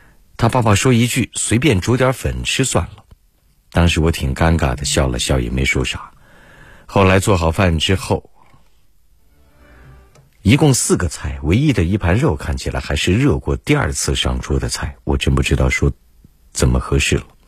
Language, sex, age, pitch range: Chinese, male, 50-69, 70-100 Hz